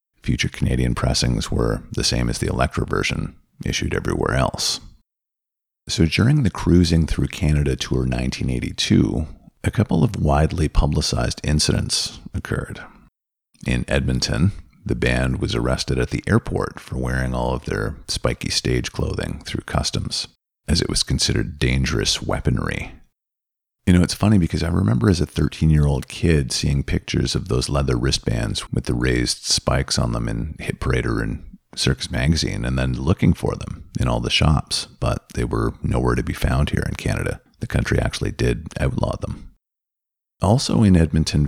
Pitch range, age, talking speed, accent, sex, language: 65-85 Hz, 40-59, 160 wpm, American, male, English